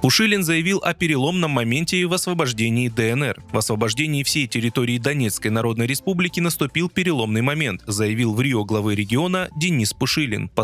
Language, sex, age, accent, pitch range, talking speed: Russian, male, 20-39, native, 115-175 Hz, 145 wpm